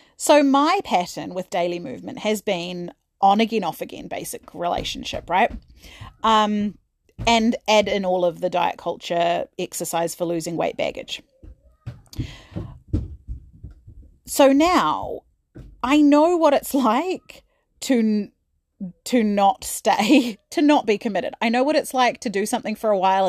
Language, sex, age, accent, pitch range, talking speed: English, female, 30-49, Australian, 180-260 Hz, 140 wpm